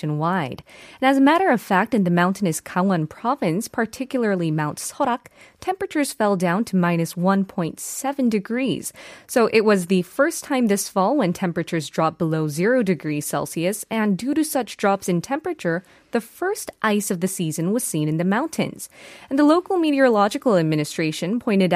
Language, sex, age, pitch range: Korean, female, 20-39, 170-240 Hz